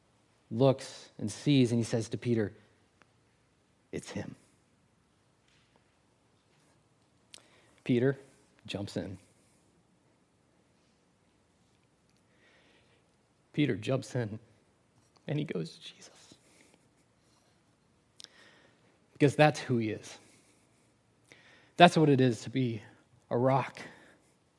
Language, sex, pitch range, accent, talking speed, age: English, male, 110-135 Hz, American, 85 wpm, 30-49